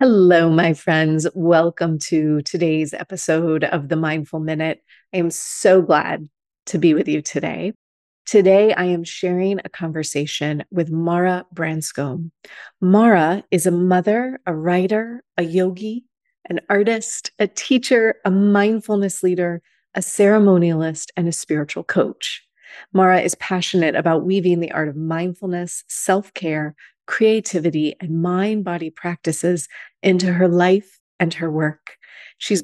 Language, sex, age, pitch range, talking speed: English, female, 30-49, 165-195 Hz, 130 wpm